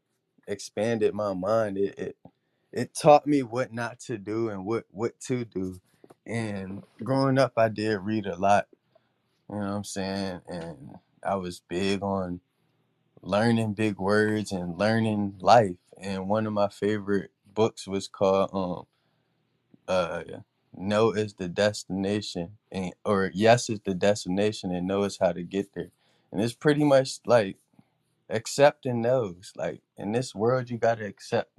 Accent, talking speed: American, 155 wpm